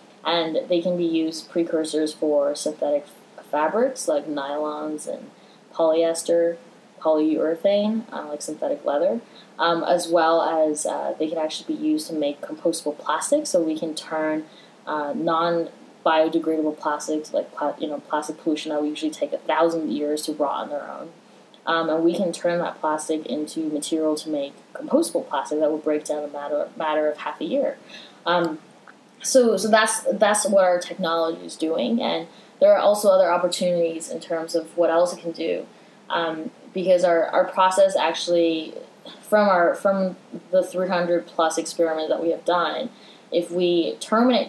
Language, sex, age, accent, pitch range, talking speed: English, female, 10-29, American, 155-190 Hz, 175 wpm